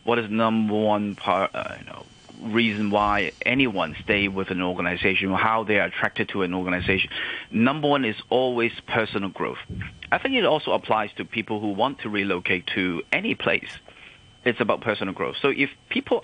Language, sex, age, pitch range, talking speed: English, male, 30-49, 100-125 Hz, 185 wpm